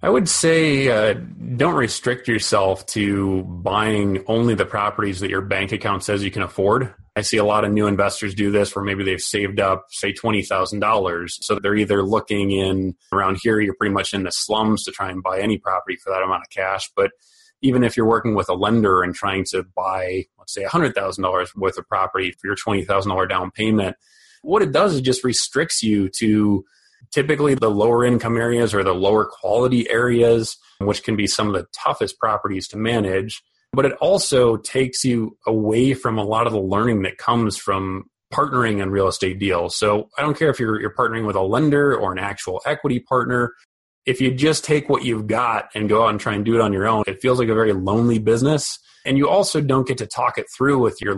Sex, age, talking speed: male, 30-49, 215 wpm